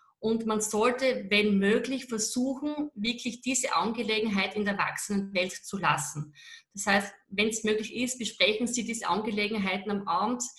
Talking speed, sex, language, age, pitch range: 145 wpm, female, German, 30-49, 200-235 Hz